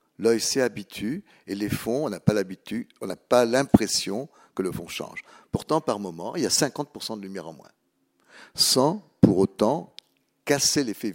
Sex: male